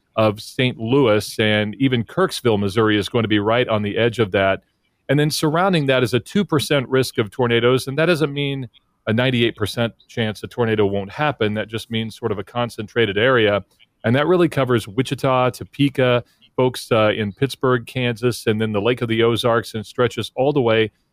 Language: English